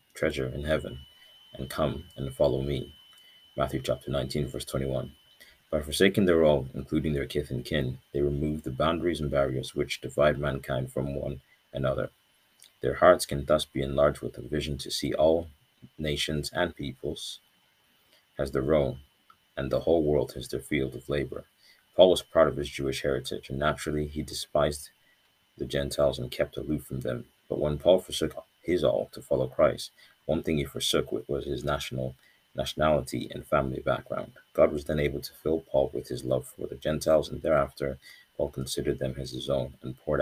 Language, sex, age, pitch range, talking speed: English, male, 40-59, 65-75 Hz, 185 wpm